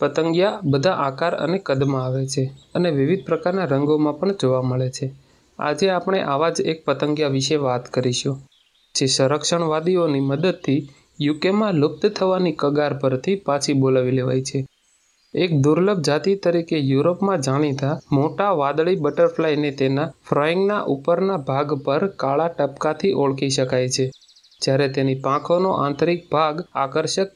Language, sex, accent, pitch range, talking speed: Gujarati, male, native, 135-170 Hz, 135 wpm